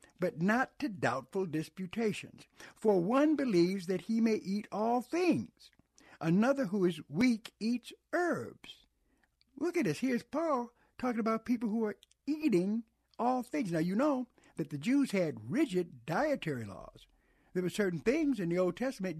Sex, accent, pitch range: male, American, 175-250 Hz